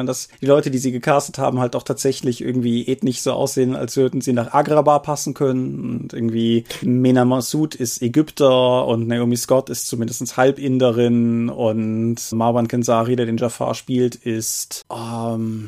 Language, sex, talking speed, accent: German, male, 160 wpm, German